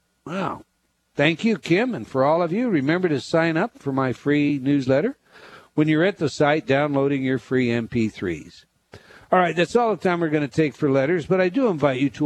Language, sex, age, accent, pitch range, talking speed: English, male, 60-79, American, 125-165 Hz, 215 wpm